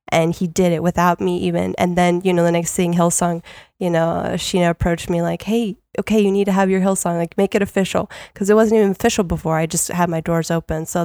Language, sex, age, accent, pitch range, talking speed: English, female, 10-29, American, 170-195 Hz, 250 wpm